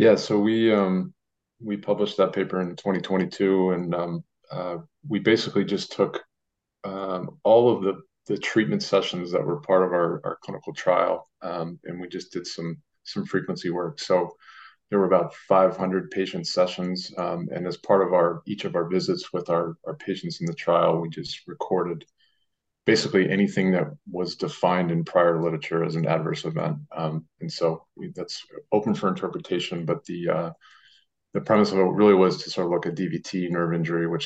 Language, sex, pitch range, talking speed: English, male, 85-100 Hz, 185 wpm